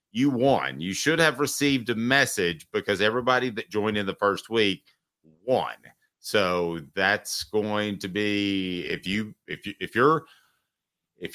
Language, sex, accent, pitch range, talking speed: English, male, American, 80-100 Hz, 155 wpm